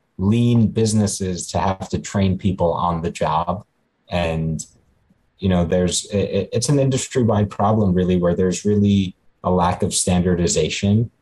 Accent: American